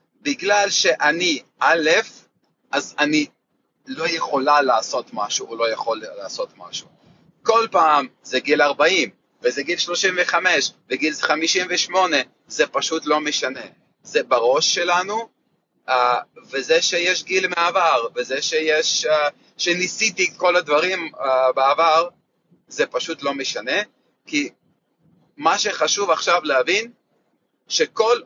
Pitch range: 155-250 Hz